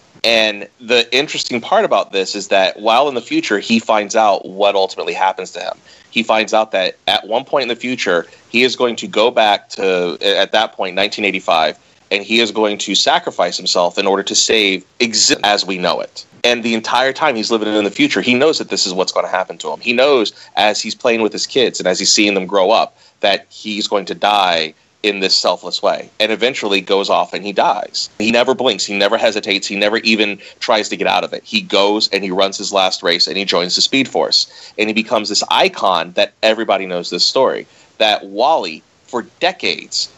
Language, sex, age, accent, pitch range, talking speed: English, male, 30-49, American, 100-115 Hz, 225 wpm